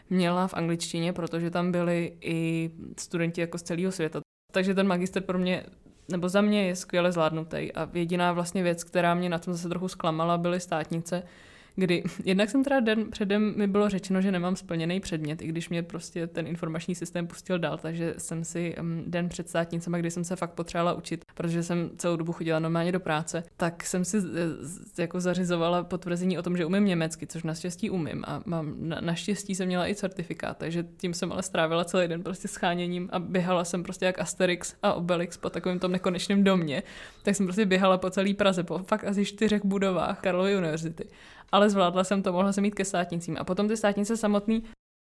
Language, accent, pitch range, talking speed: Czech, native, 170-195 Hz, 205 wpm